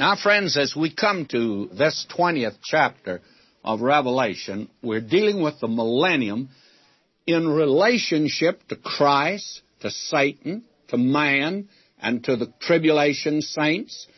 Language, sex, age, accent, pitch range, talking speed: English, male, 60-79, American, 125-160 Hz, 125 wpm